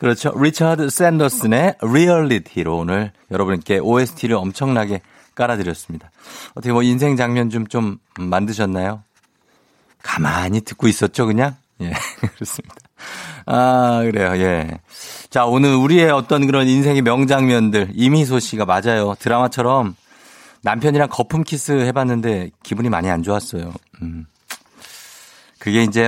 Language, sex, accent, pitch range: Korean, male, native, 100-135 Hz